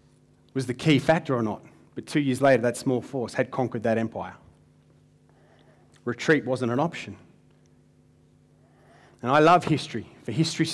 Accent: Australian